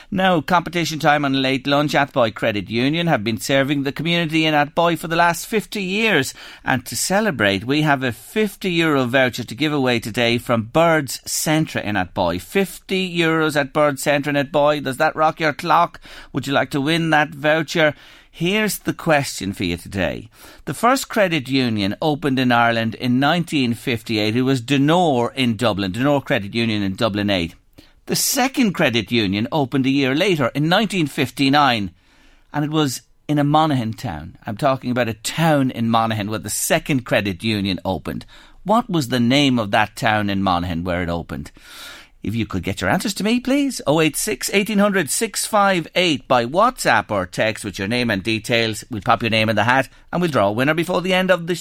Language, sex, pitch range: English, male, 115-160 Hz